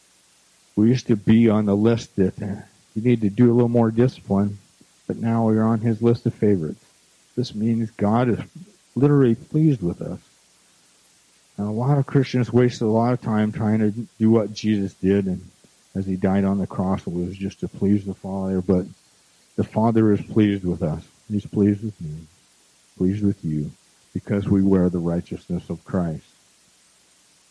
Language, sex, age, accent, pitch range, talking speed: English, male, 50-69, American, 100-120 Hz, 180 wpm